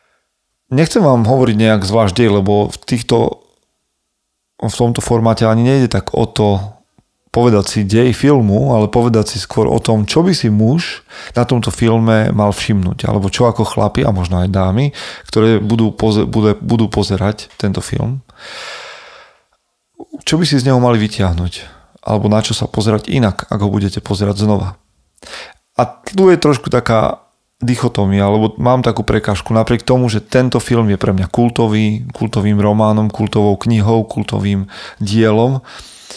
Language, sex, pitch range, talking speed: Slovak, male, 105-120 Hz, 155 wpm